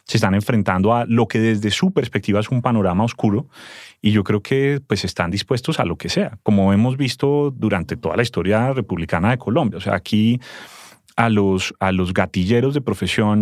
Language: English